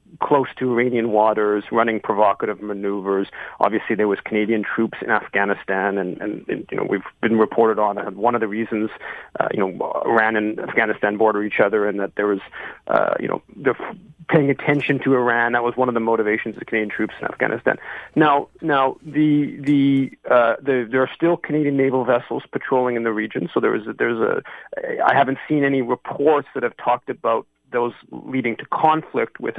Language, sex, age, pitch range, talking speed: English, male, 40-59, 110-135 Hz, 195 wpm